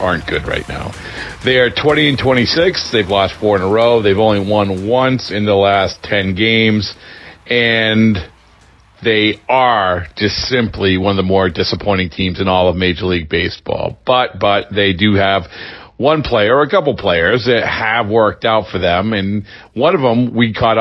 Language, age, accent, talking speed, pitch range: English, 40-59, American, 185 wpm, 95-115 Hz